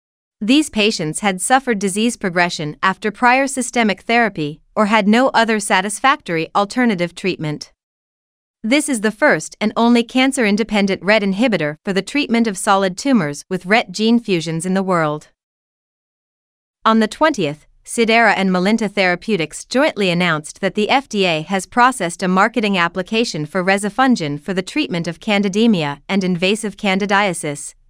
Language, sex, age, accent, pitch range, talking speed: English, female, 30-49, American, 180-230 Hz, 140 wpm